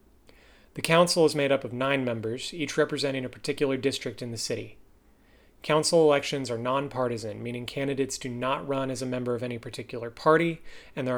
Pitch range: 120-140 Hz